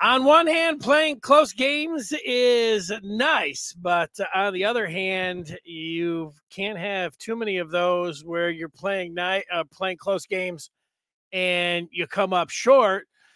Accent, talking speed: American, 150 wpm